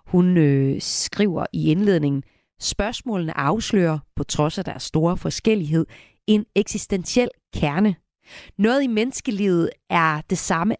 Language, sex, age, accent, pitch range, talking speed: Danish, female, 30-49, native, 155-210 Hz, 120 wpm